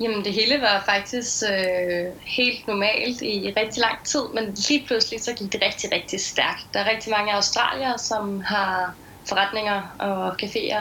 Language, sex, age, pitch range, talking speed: Danish, female, 20-39, 190-225 Hz, 170 wpm